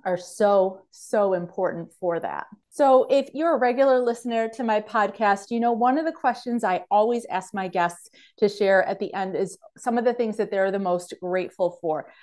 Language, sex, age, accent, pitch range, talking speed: English, female, 30-49, American, 185-220 Hz, 205 wpm